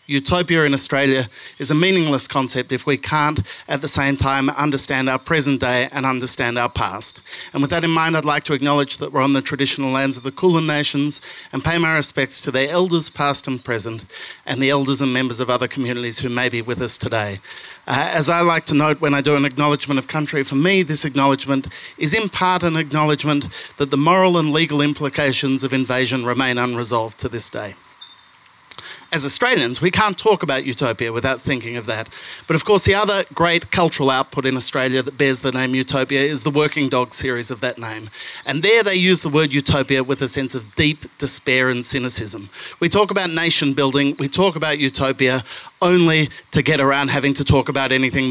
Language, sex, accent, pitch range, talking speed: English, male, Australian, 130-155 Hz, 205 wpm